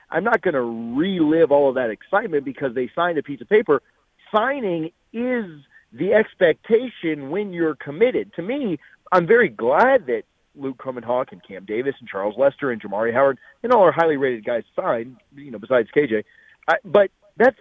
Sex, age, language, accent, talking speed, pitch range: male, 40-59, English, American, 180 wpm, 140-230 Hz